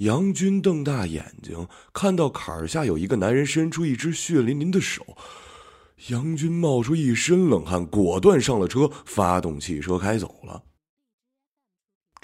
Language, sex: Chinese, male